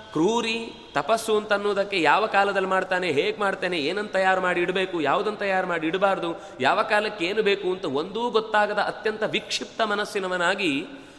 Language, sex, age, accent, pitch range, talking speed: Kannada, male, 30-49, native, 175-215 Hz, 145 wpm